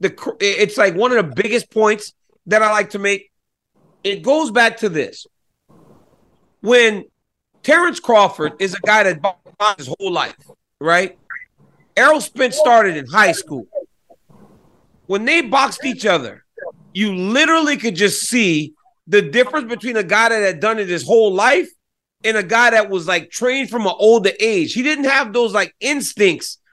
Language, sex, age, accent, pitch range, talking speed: English, male, 40-59, American, 200-270 Hz, 165 wpm